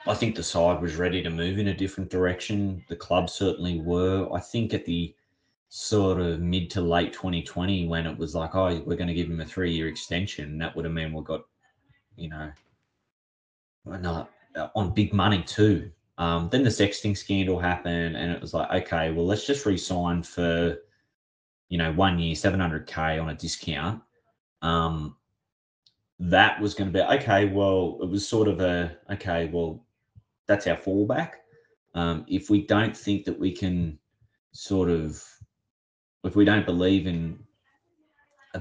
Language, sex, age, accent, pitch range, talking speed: English, male, 20-39, Australian, 85-100 Hz, 170 wpm